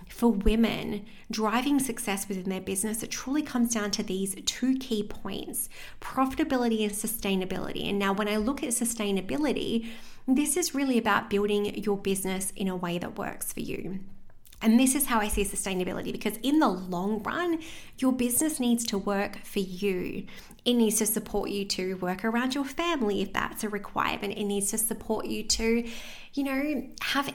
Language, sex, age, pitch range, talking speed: English, female, 20-39, 200-255 Hz, 180 wpm